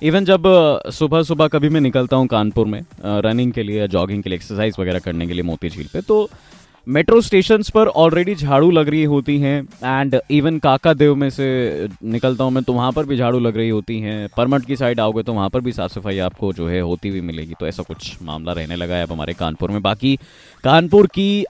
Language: Hindi